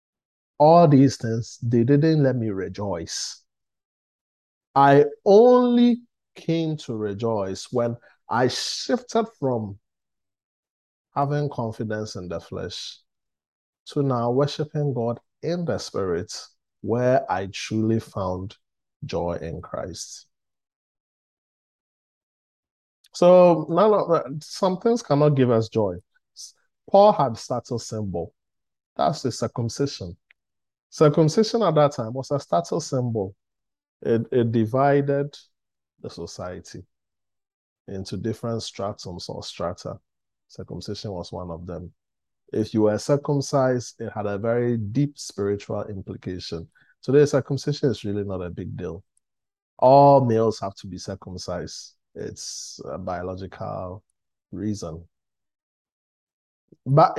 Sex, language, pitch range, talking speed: male, English, 100-145 Hz, 110 wpm